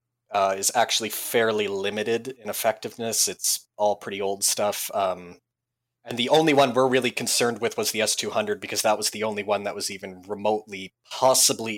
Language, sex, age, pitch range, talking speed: English, male, 20-39, 100-130 Hz, 180 wpm